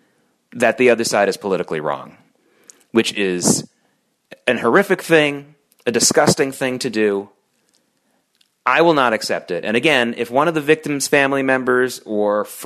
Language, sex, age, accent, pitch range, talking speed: English, male, 30-49, American, 110-135 Hz, 150 wpm